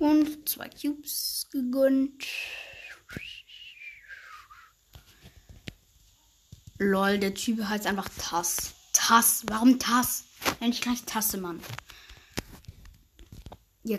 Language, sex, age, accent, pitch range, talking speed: German, female, 20-39, German, 215-300 Hz, 80 wpm